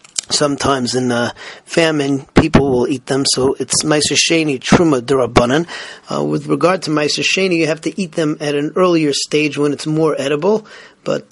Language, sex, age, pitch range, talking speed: English, male, 30-49, 140-165 Hz, 170 wpm